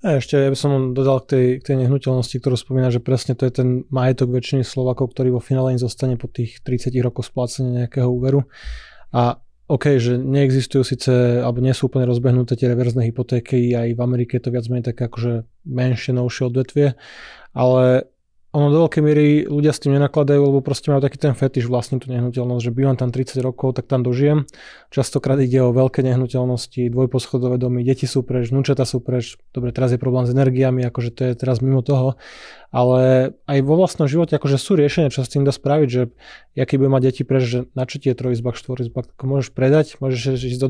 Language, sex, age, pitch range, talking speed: Slovak, male, 20-39, 125-135 Hz, 205 wpm